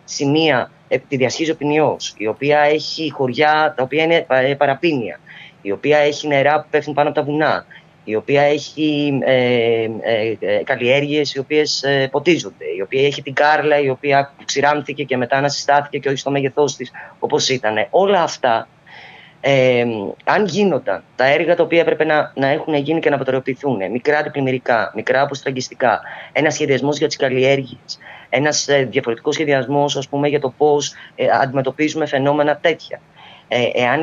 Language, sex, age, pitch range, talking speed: Greek, female, 20-39, 130-155 Hz, 165 wpm